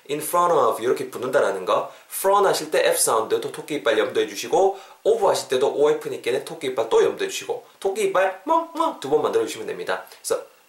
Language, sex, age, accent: Korean, male, 20-39, native